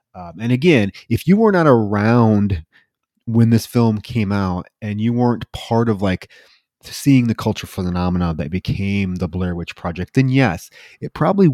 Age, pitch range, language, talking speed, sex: 30-49, 95-125 Hz, English, 170 wpm, male